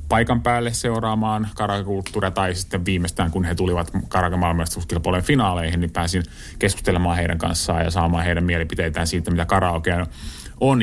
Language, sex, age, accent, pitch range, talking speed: Finnish, male, 30-49, native, 85-100 Hz, 140 wpm